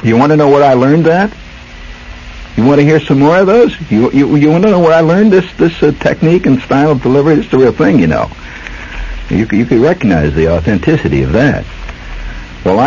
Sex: male